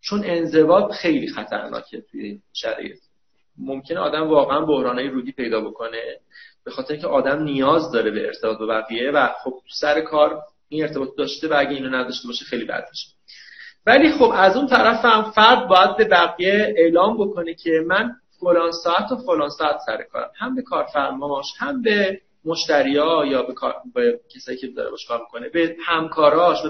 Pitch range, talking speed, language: 145-225 Hz, 165 wpm, Persian